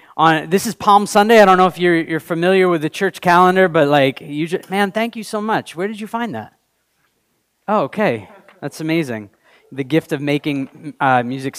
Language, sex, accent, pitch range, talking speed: English, male, American, 140-180 Hz, 205 wpm